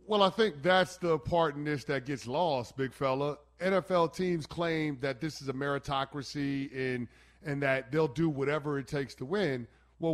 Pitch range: 135-170 Hz